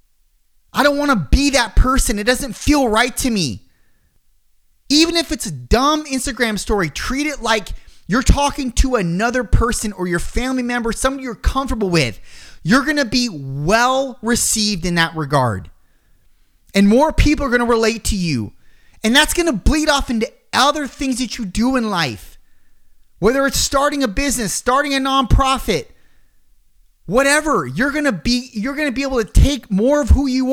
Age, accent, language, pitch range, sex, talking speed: 30-49, American, English, 195-275 Hz, male, 180 wpm